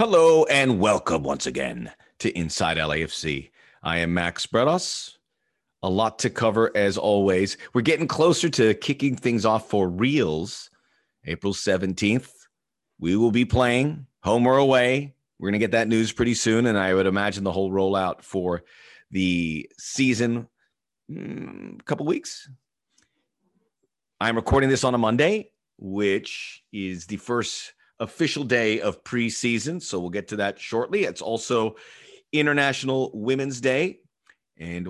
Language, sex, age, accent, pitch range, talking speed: English, male, 30-49, American, 95-120 Hz, 145 wpm